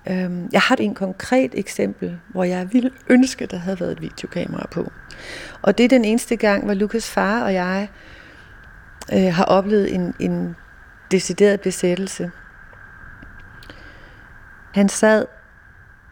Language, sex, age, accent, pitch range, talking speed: Danish, female, 40-59, native, 190-220 Hz, 125 wpm